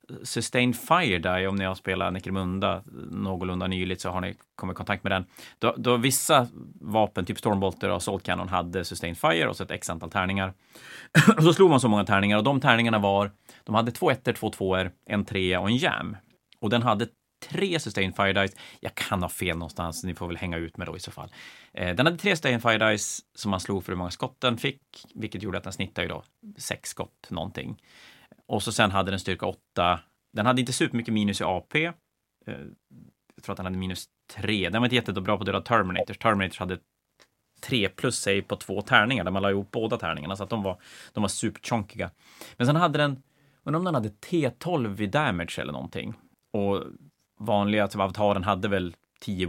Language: Swedish